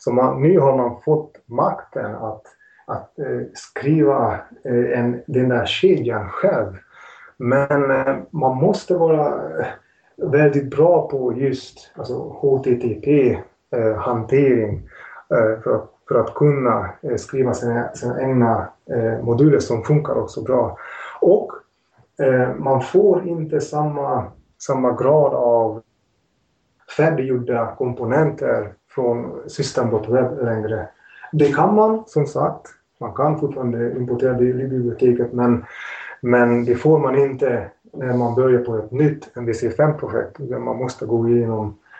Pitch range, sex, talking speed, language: 120-150 Hz, male, 110 wpm, English